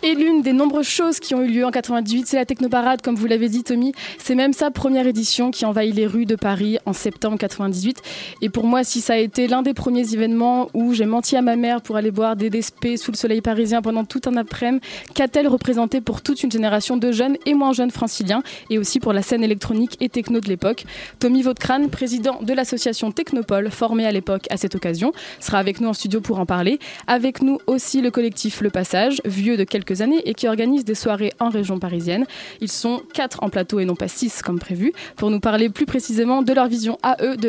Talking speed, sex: 235 wpm, female